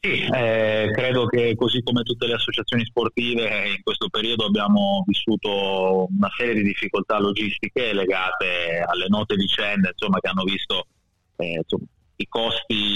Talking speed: 150 wpm